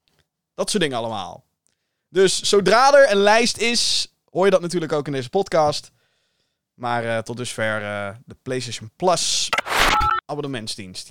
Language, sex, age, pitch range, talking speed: Dutch, male, 20-39, 140-210 Hz, 145 wpm